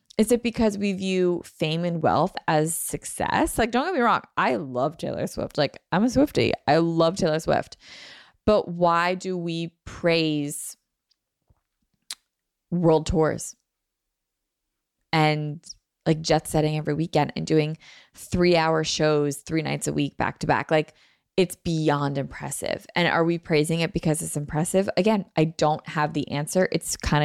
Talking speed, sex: 150 wpm, female